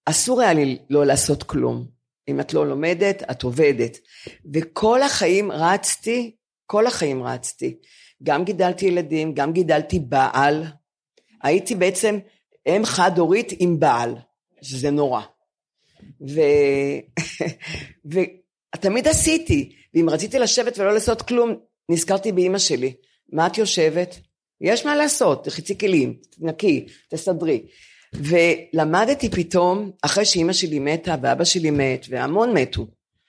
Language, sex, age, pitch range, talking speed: Hebrew, female, 40-59, 145-200 Hz, 120 wpm